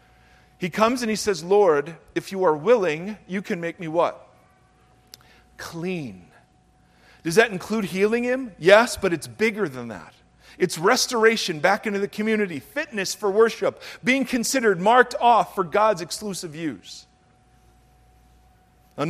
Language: English